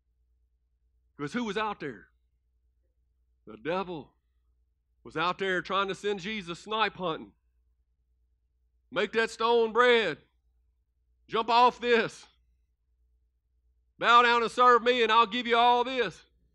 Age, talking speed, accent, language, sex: 50-69, 125 wpm, American, English, male